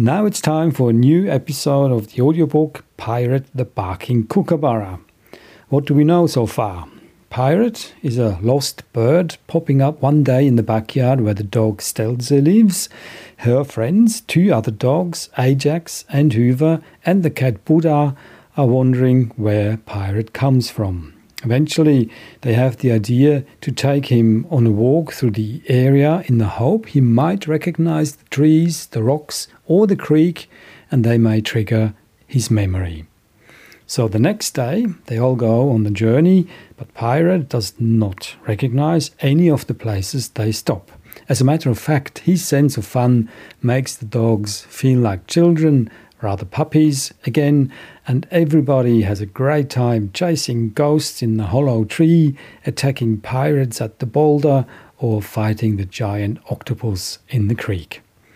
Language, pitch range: English, 110-150 Hz